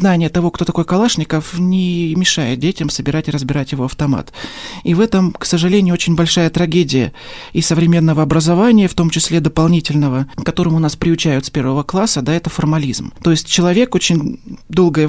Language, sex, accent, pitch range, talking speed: Russian, male, native, 140-170 Hz, 165 wpm